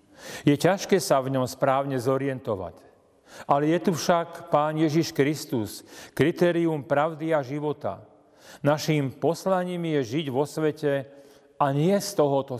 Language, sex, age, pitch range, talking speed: Slovak, male, 40-59, 135-165 Hz, 135 wpm